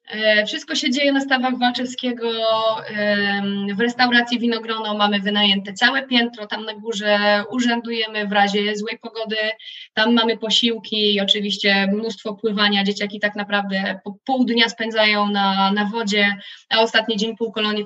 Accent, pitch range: native, 205-230 Hz